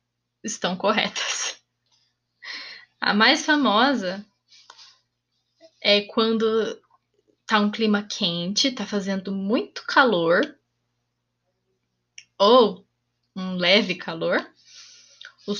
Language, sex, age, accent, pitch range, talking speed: Portuguese, female, 10-29, Brazilian, 185-270 Hz, 75 wpm